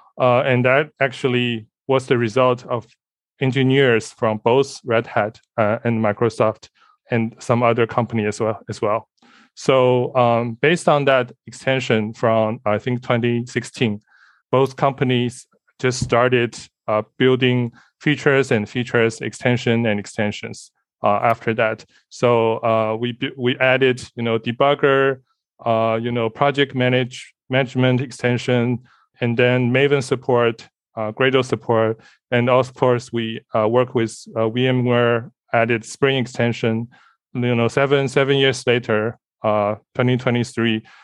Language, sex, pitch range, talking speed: English, male, 115-130 Hz, 135 wpm